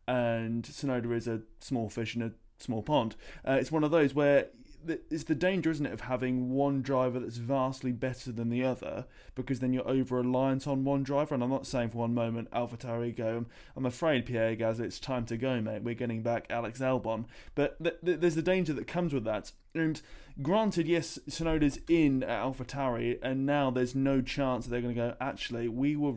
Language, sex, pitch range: English, male, 120-145 Hz